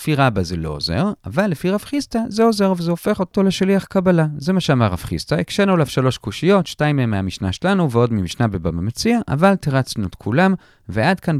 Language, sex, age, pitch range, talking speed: Hebrew, male, 30-49, 115-190 Hz, 200 wpm